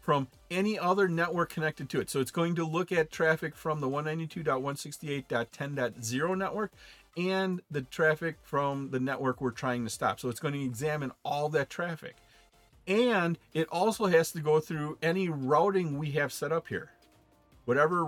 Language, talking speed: English, 170 wpm